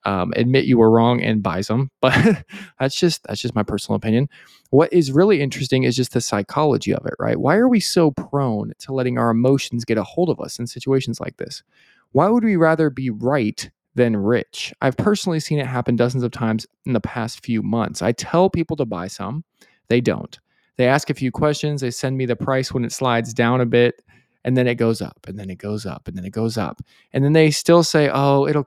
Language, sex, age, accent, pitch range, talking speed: English, male, 20-39, American, 115-150 Hz, 235 wpm